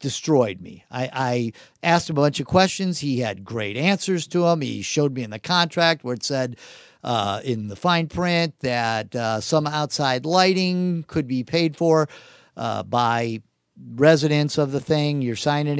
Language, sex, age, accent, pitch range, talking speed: English, male, 50-69, American, 115-155 Hz, 180 wpm